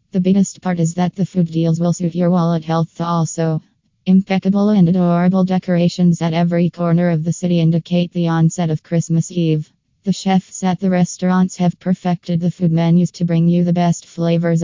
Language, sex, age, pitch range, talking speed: English, female, 20-39, 165-180 Hz, 190 wpm